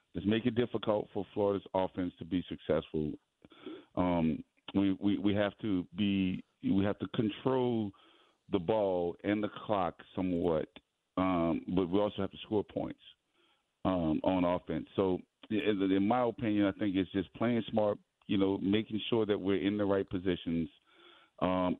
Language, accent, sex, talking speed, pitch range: English, American, male, 165 wpm, 90-105 Hz